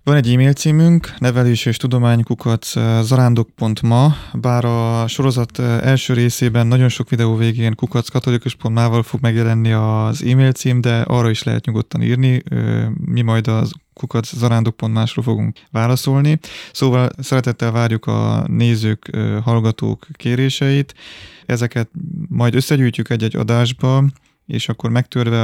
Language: Hungarian